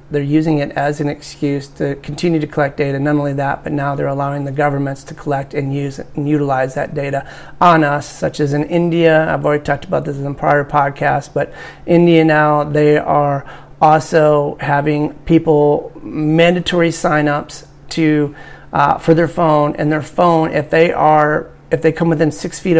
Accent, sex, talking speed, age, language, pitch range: American, male, 185 wpm, 30-49, English, 145-155 Hz